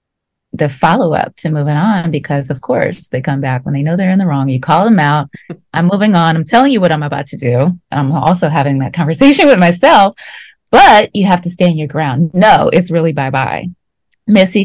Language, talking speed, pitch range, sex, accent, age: English, 220 wpm, 145-190 Hz, female, American, 20-39